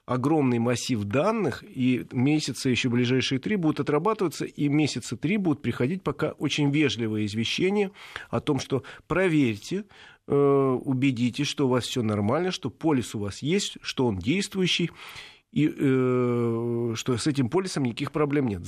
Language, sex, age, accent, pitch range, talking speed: Russian, male, 40-59, native, 120-145 Hz, 150 wpm